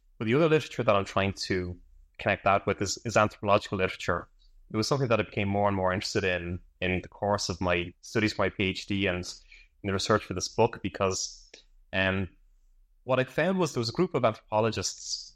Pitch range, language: 95-110 Hz, English